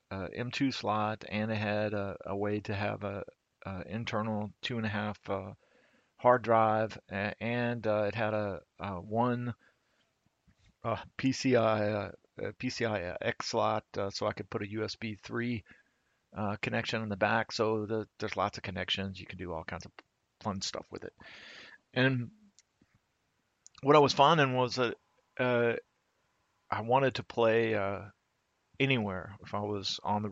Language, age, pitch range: English, 40-59, 100-120 Hz